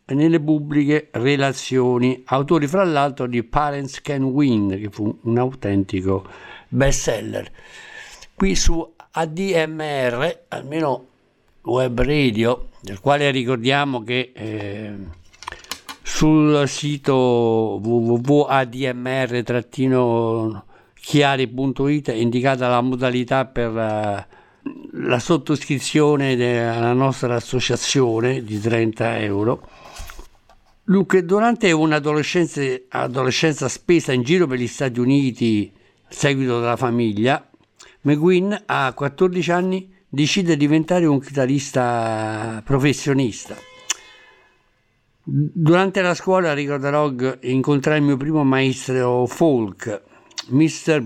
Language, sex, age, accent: Italian, male, 60-79, native